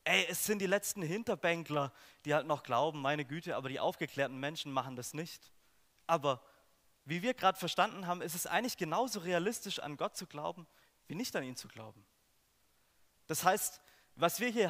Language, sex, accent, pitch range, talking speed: German, male, German, 145-185 Hz, 185 wpm